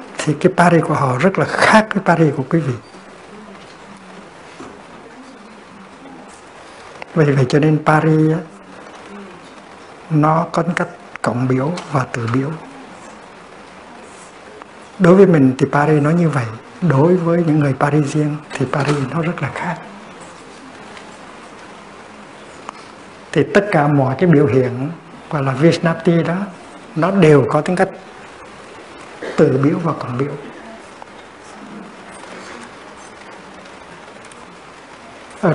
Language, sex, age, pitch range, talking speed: Vietnamese, male, 60-79, 140-180 Hz, 115 wpm